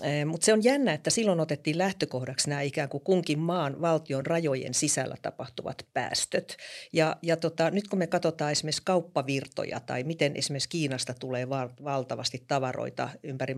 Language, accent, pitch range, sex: Finnish, native, 135-165 Hz, female